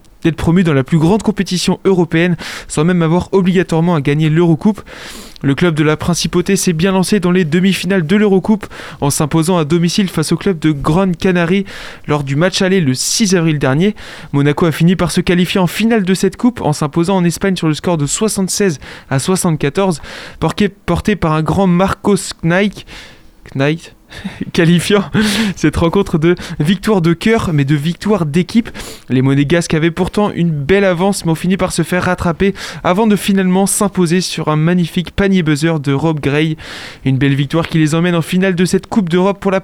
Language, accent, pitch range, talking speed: French, French, 160-190 Hz, 190 wpm